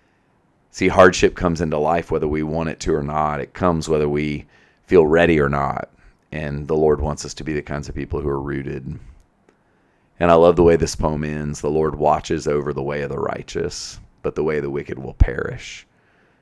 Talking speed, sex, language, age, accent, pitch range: 215 wpm, male, English, 30-49, American, 75-80 Hz